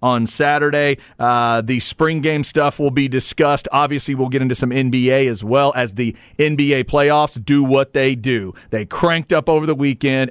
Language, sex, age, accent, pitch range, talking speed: English, male, 40-59, American, 135-190 Hz, 185 wpm